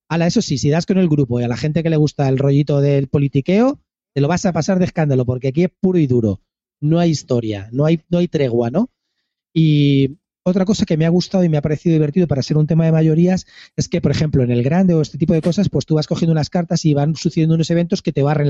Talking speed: 275 wpm